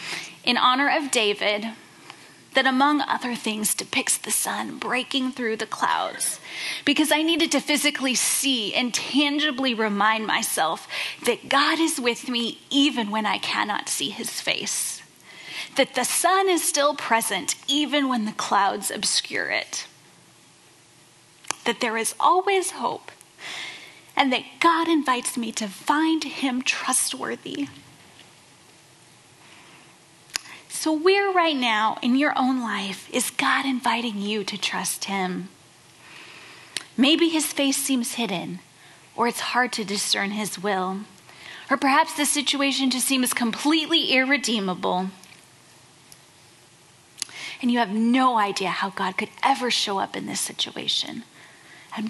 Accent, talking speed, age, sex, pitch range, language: American, 130 wpm, 10-29, female, 215-290 Hz, English